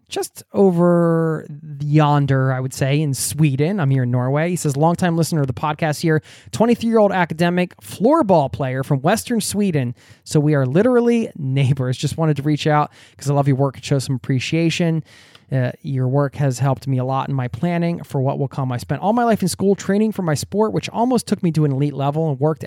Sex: male